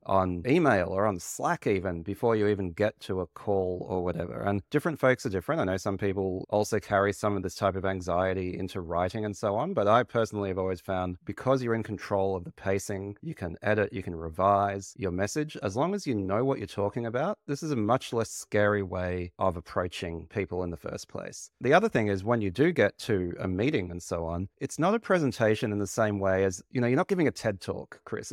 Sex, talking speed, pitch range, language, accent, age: male, 240 wpm, 95-120 Hz, English, Australian, 30-49